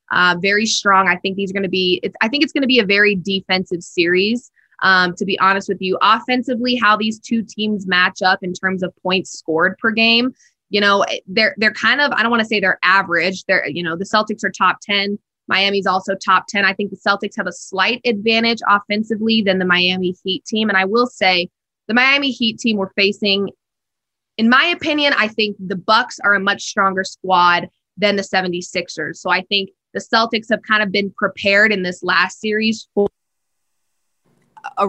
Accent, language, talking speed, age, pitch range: American, English, 210 wpm, 20-39, 185-215 Hz